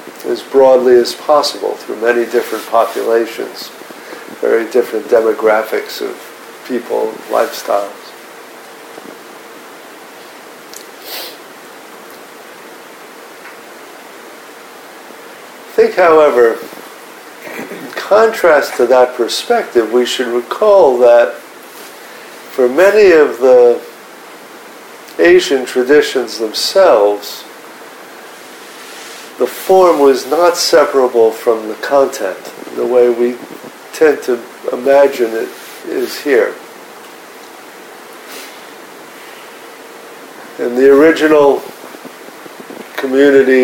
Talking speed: 75 wpm